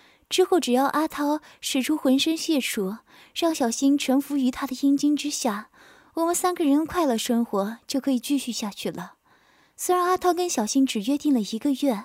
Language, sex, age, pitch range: Chinese, female, 20-39, 230-305 Hz